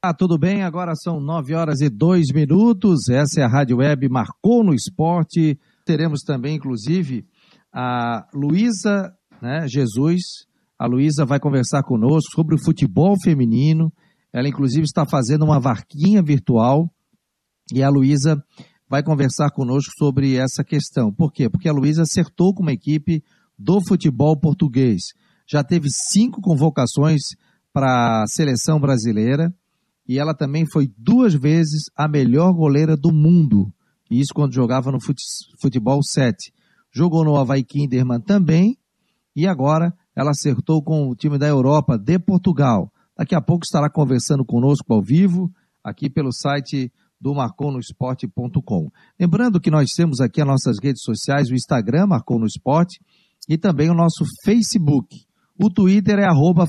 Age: 50-69